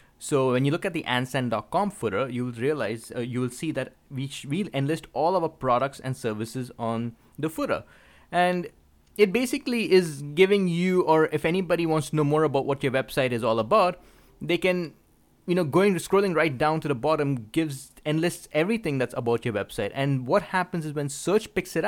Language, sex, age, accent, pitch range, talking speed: English, male, 20-39, Indian, 130-170 Hz, 205 wpm